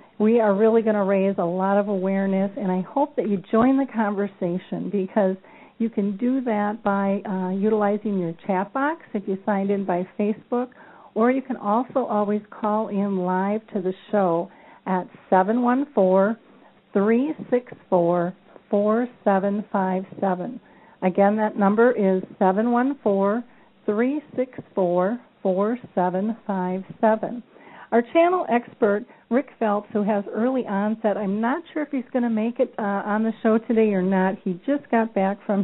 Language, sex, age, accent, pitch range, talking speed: English, female, 50-69, American, 195-235 Hz, 140 wpm